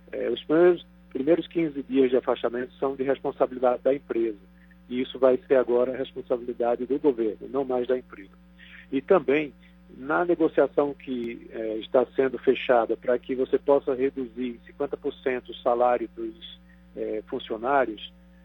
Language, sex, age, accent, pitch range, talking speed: Portuguese, male, 50-69, Brazilian, 115-140 Hz, 135 wpm